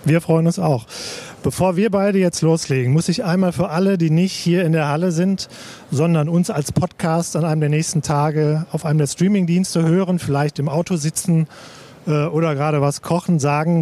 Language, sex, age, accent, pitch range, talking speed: German, male, 40-59, German, 150-180 Hz, 195 wpm